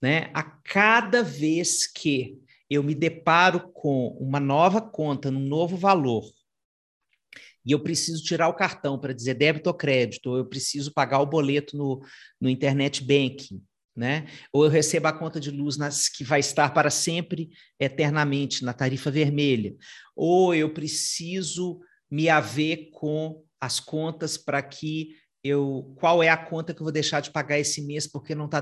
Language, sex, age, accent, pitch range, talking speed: Portuguese, male, 40-59, Brazilian, 135-160 Hz, 165 wpm